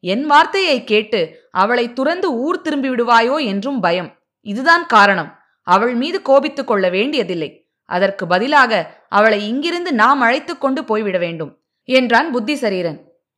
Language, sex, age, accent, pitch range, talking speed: Tamil, female, 20-39, native, 205-300 Hz, 120 wpm